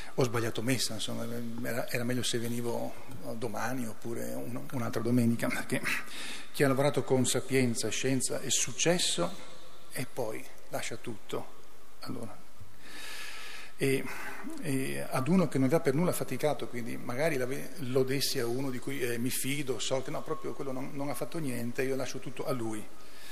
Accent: native